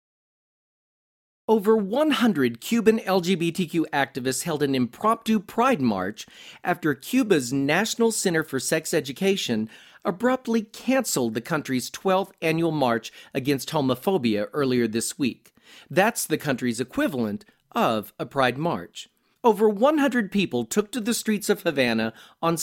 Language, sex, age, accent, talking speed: English, male, 40-59, American, 125 wpm